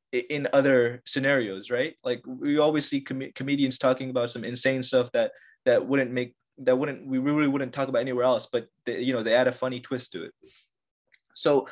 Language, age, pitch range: English, 20-39, 125-145 Hz